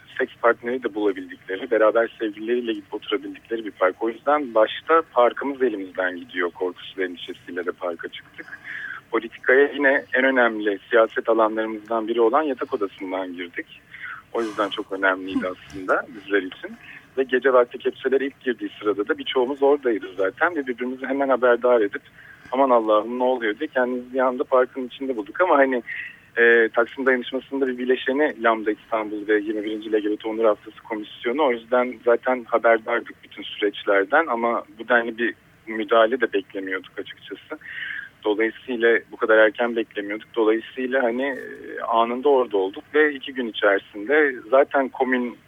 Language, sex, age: Turkish, male, 40-59